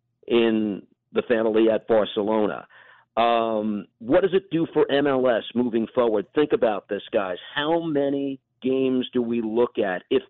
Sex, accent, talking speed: male, American, 150 wpm